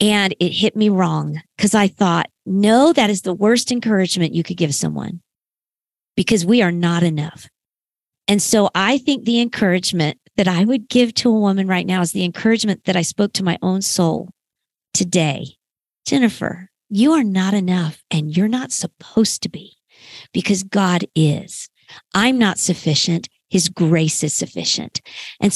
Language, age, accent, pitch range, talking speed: English, 50-69, American, 180-220 Hz, 165 wpm